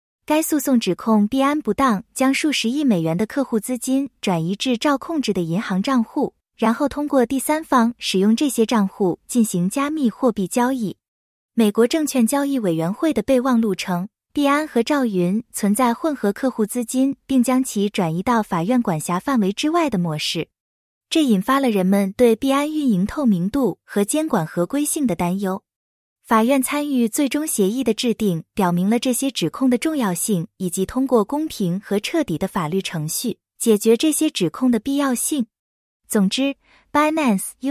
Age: 20-39